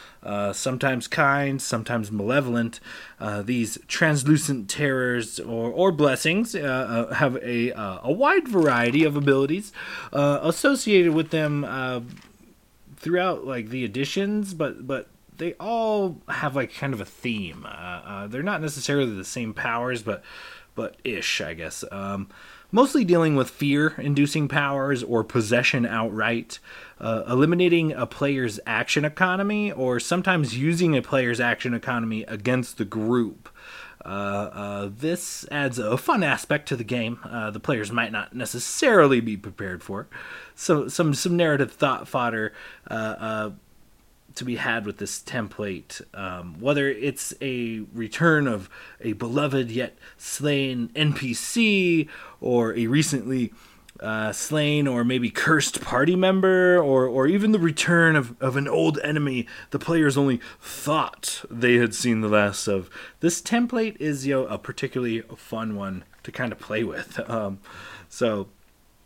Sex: male